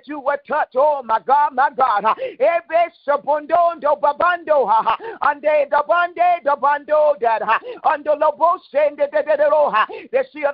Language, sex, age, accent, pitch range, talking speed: English, male, 50-69, American, 285-305 Hz, 160 wpm